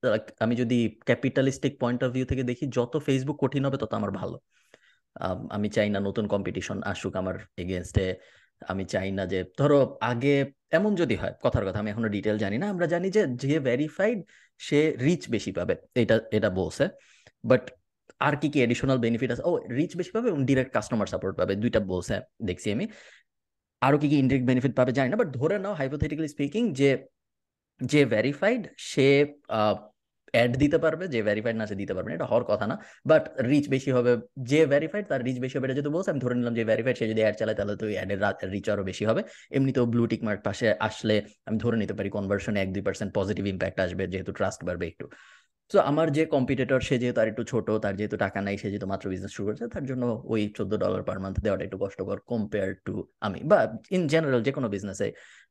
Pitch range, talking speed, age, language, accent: 105-140 Hz, 105 wpm, 20-39, Bengali, native